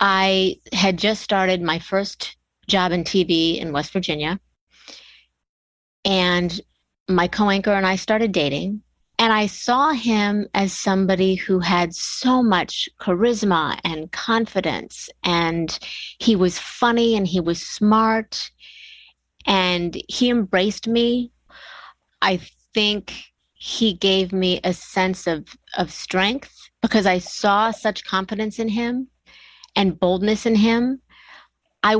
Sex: female